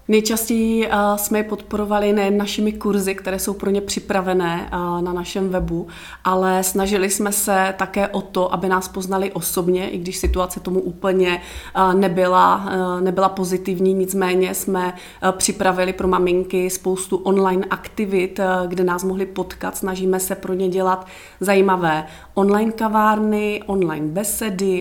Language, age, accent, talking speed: Czech, 30-49, native, 135 wpm